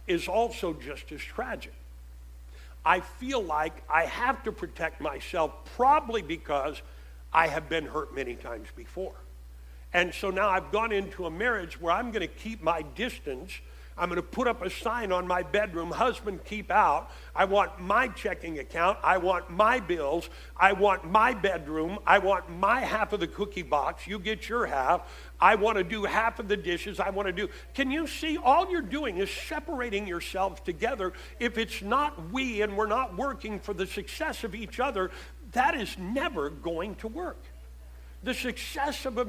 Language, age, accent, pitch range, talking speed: English, 60-79, American, 170-230 Hz, 185 wpm